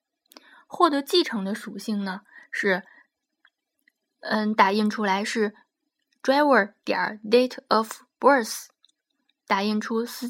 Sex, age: female, 20-39